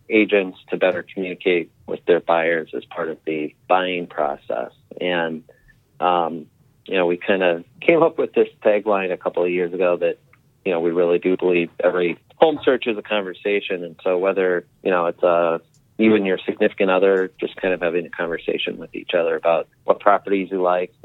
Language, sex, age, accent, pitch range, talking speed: English, male, 30-49, American, 85-100 Hz, 195 wpm